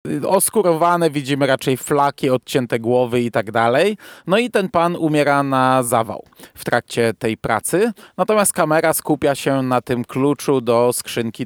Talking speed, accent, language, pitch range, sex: 150 wpm, native, Polish, 125-155 Hz, male